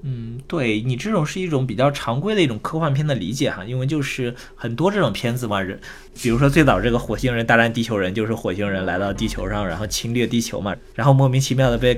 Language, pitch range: Chinese, 115-155 Hz